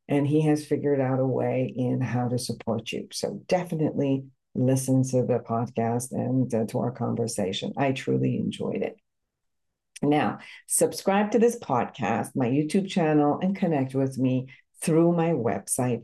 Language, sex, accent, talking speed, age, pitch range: English, female, American, 155 wpm, 60-79, 125-160 Hz